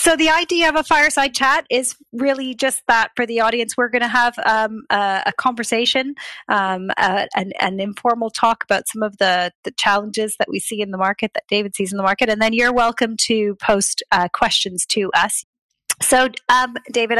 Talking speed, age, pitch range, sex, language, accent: 200 wpm, 30-49, 200-250 Hz, female, English, American